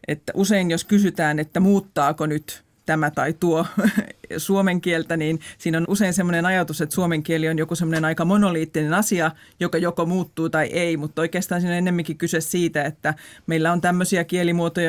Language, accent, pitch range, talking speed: Finnish, native, 155-185 Hz, 175 wpm